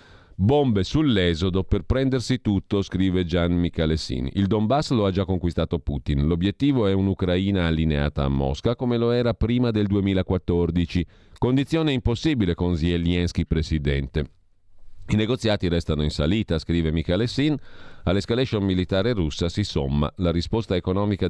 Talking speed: 130 wpm